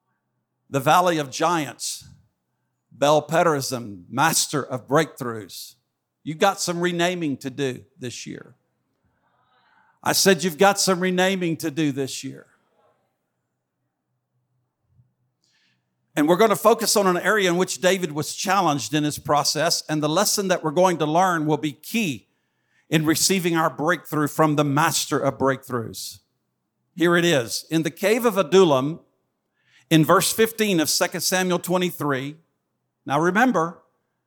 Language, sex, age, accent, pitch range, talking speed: English, male, 50-69, American, 145-190 Hz, 140 wpm